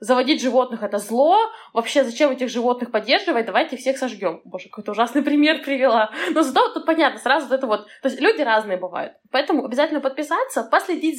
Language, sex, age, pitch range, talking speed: Russian, female, 20-39, 225-305 Hz, 190 wpm